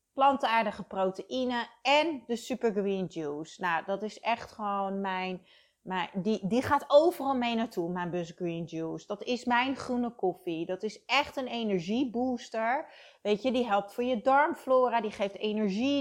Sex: female